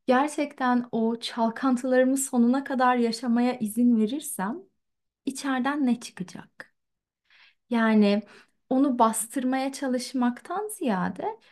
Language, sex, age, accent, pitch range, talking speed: Turkish, female, 30-49, native, 225-295 Hz, 85 wpm